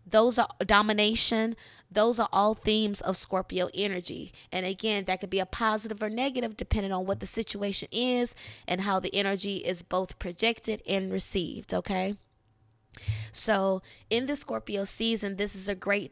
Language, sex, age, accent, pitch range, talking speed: English, female, 20-39, American, 185-210 Hz, 165 wpm